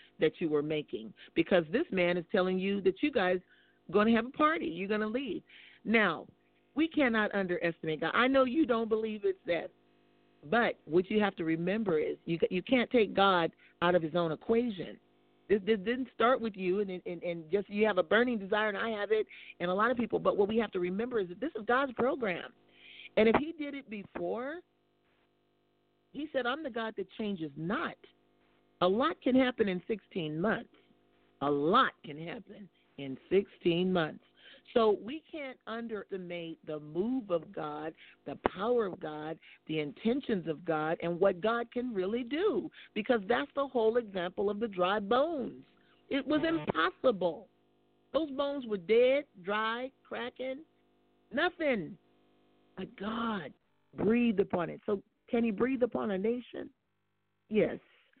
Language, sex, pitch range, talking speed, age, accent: English, male, 185-265 Hz, 175 wpm, 40-59, American